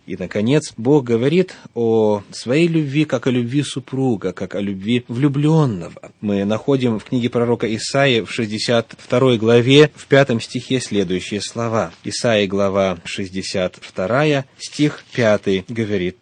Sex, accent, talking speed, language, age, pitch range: male, native, 130 wpm, Russian, 30-49, 115-155 Hz